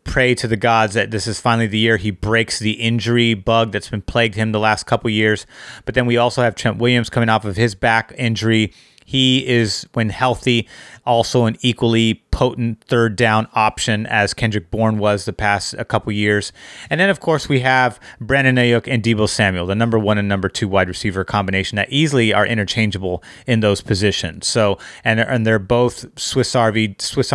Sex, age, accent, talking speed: male, 30-49, American, 195 wpm